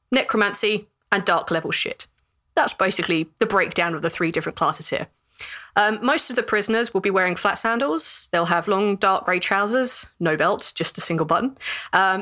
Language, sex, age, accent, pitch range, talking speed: English, female, 30-49, British, 175-225 Hz, 180 wpm